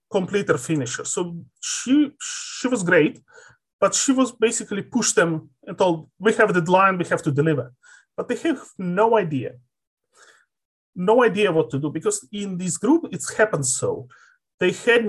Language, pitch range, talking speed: English, 160-225 Hz, 165 wpm